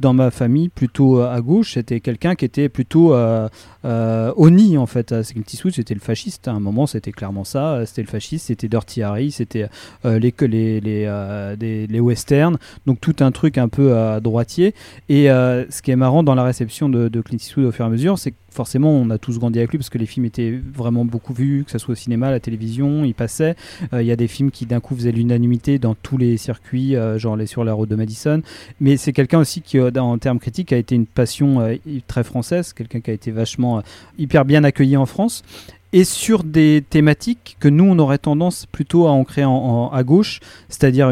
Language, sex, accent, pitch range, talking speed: French, male, French, 115-145 Hz, 230 wpm